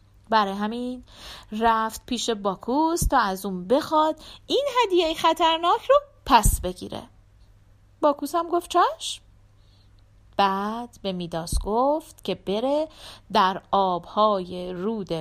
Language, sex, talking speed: Persian, female, 110 wpm